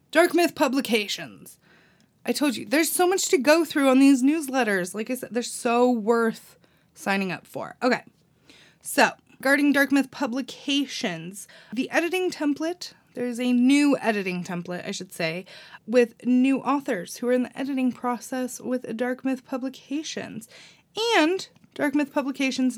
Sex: female